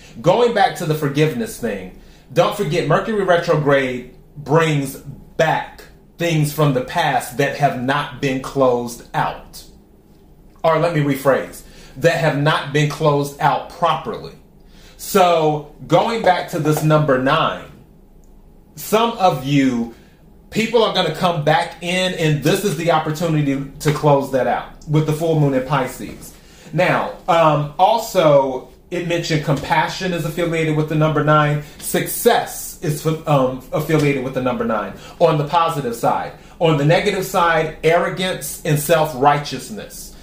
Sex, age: male, 30-49